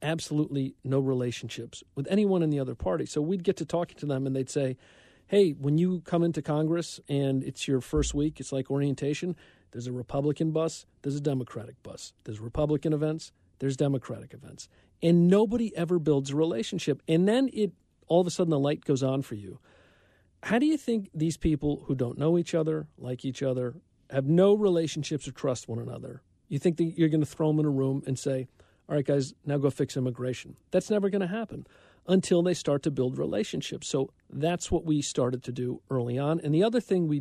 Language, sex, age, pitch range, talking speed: English, male, 50-69, 130-170 Hz, 215 wpm